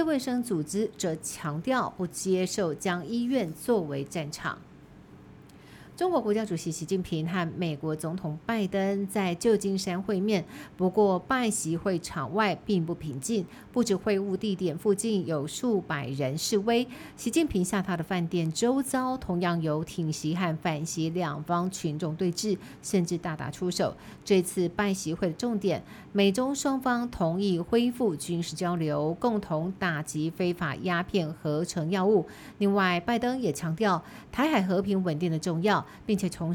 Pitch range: 165-215 Hz